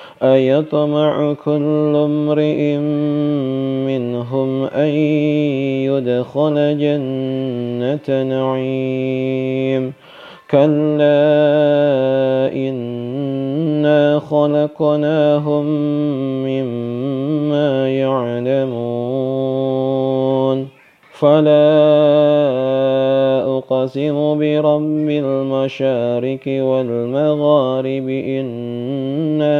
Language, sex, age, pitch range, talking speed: Indonesian, male, 30-49, 130-150 Hz, 30 wpm